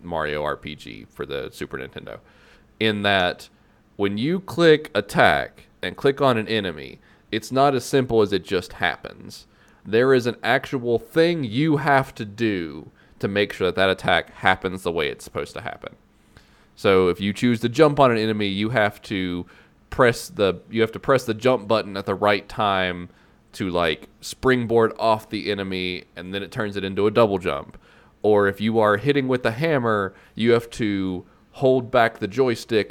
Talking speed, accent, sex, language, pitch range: 185 wpm, American, male, English, 95-125 Hz